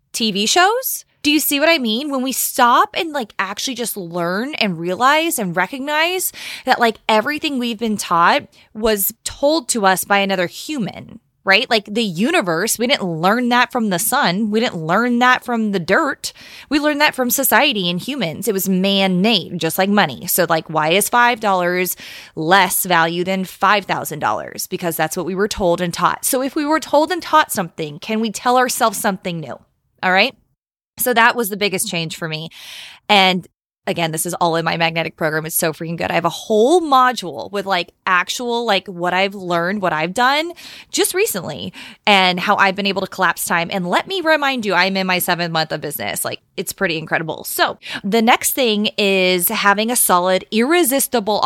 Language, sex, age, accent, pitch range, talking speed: English, female, 20-39, American, 180-245 Hz, 195 wpm